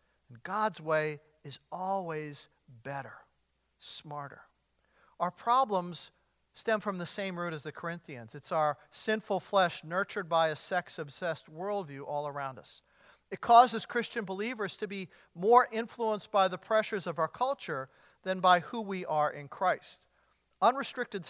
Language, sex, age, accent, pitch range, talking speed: English, male, 50-69, American, 160-215 Hz, 140 wpm